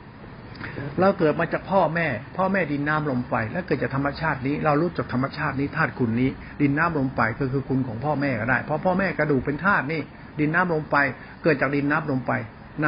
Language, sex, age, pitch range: Thai, male, 60-79, 130-180 Hz